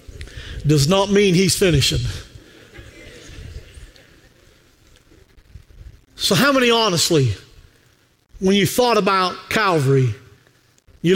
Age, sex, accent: 50-69, male, American